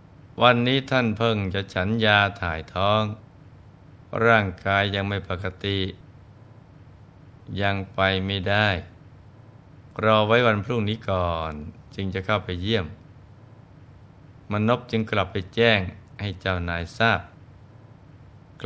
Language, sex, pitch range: Thai, male, 95-115 Hz